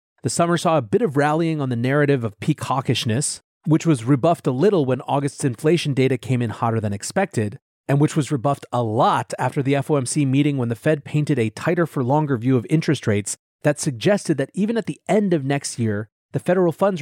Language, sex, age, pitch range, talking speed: English, male, 30-49, 125-170 Hz, 215 wpm